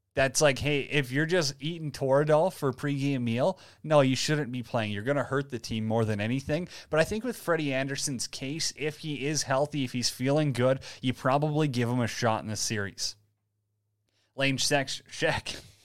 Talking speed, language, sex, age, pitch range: 195 wpm, English, male, 20-39, 120-155 Hz